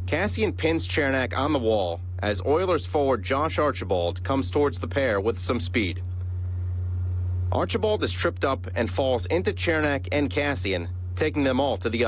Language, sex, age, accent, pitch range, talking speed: English, male, 30-49, American, 90-100 Hz, 165 wpm